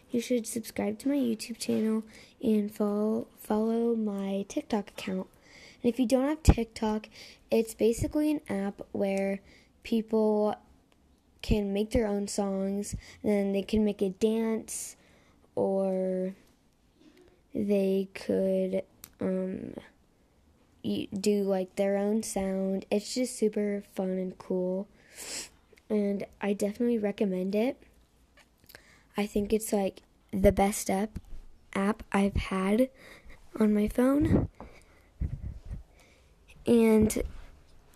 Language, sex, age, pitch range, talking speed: English, female, 10-29, 200-230 Hz, 110 wpm